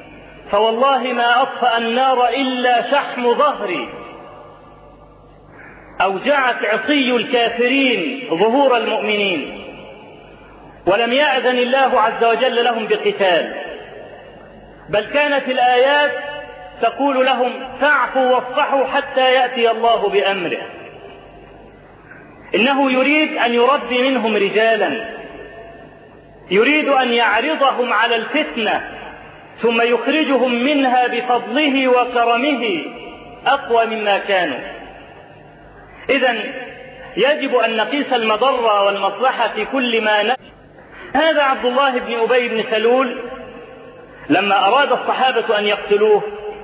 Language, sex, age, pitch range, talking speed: Arabic, male, 40-59, 230-270 Hz, 90 wpm